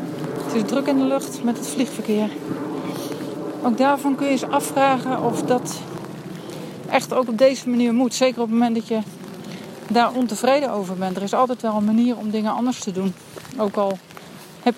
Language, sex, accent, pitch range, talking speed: Dutch, female, Dutch, 190-240 Hz, 185 wpm